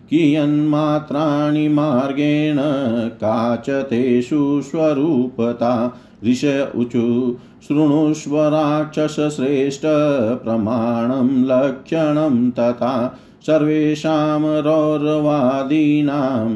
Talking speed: 45 wpm